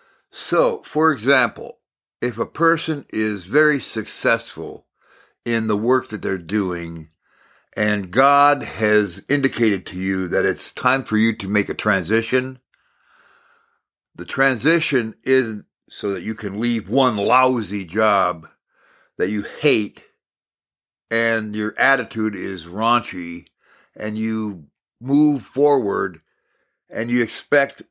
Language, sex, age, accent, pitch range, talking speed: English, male, 60-79, American, 105-130 Hz, 125 wpm